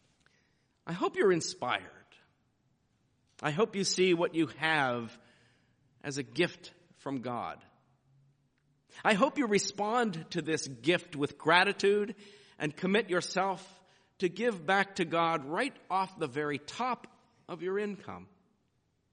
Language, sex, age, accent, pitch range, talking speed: English, male, 50-69, American, 145-185 Hz, 130 wpm